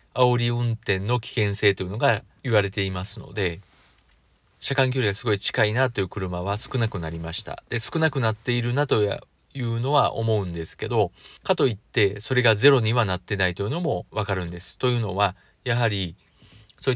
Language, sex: Japanese, male